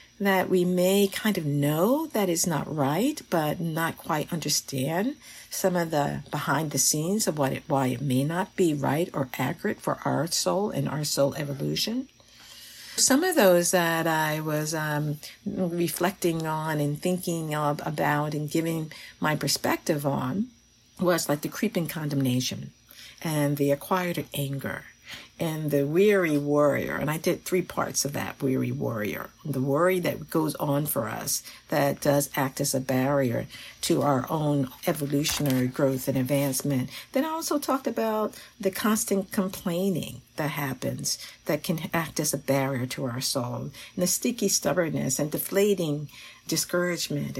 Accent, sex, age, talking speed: American, female, 50-69, 155 wpm